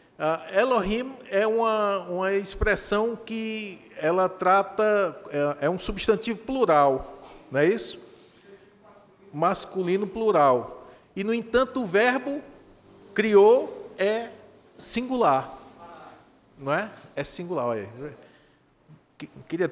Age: 40-59